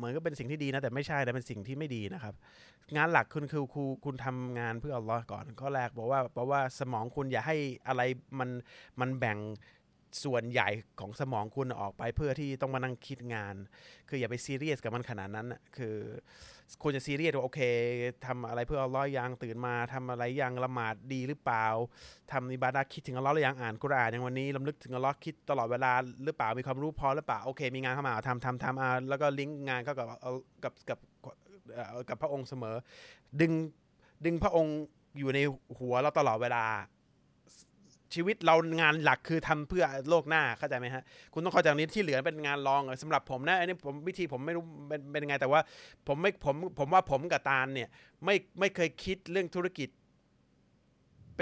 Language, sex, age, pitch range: Thai, male, 20-39, 125-150 Hz